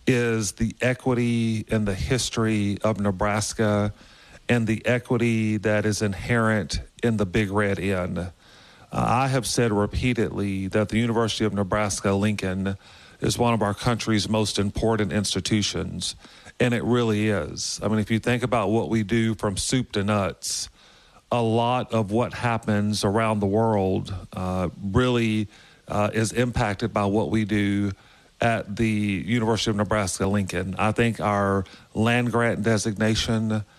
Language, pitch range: English, 100-115 Hz